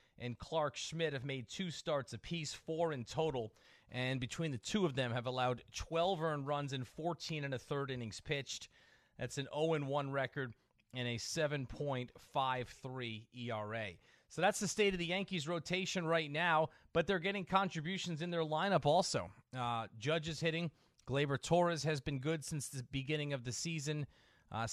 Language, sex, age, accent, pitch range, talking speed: English, male, 30-49, American, 125-150 Hz, 175 wpm